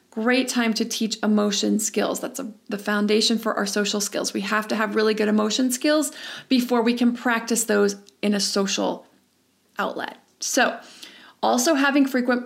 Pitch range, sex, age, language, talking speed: 225-260 Hz, female, 30-49, English, 165 wpm